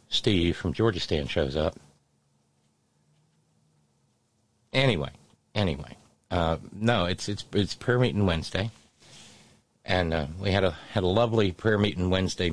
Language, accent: English, American